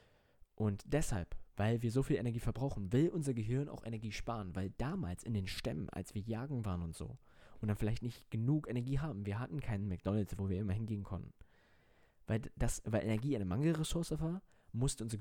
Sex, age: male, 20-39